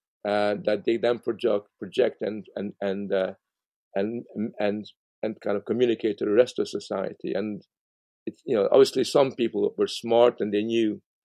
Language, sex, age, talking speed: English, male, 50-69, 175 wpm